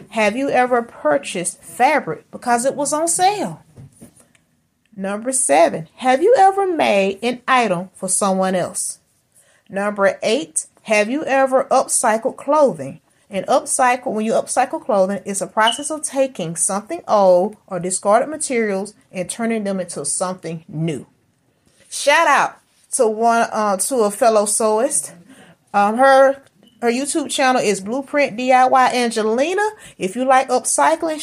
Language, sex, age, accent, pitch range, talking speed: English, female, 30-49, American, 190-265 Hz, 140 wpm